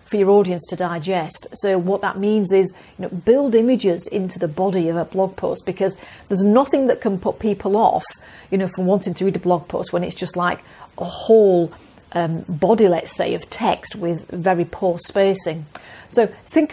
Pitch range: 180-215 Hz